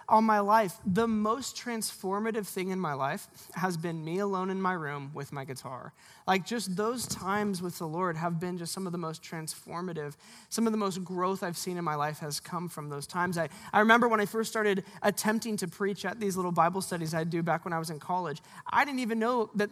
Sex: male